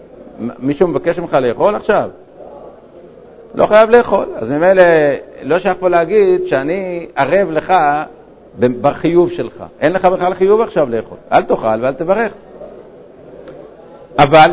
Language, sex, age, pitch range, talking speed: Hebrew, male, 50-69, 145-195 Hz, 120 wpm